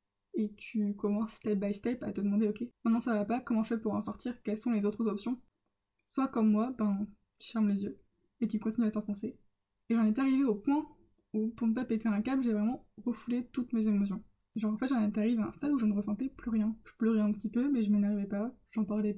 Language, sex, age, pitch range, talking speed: French, female, 20-39, 215-250 Hz, 260 wpm